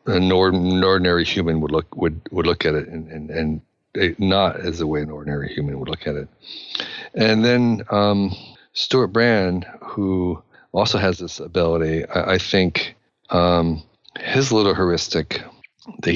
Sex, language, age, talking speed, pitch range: male, English, 50-69, 155 wpm, 80-95 Hz